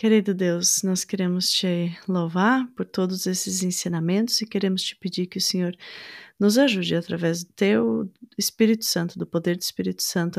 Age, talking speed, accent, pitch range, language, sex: 30-49, 170 wpm, Brazilian, 175-210 Hz, Portuguese, female